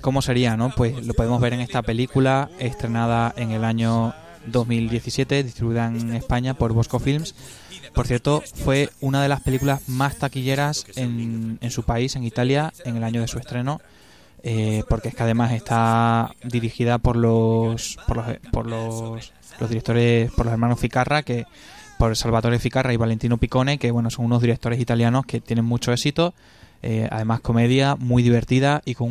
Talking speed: 175 wpm